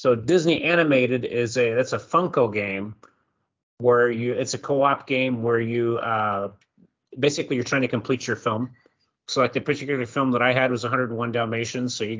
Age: 30-49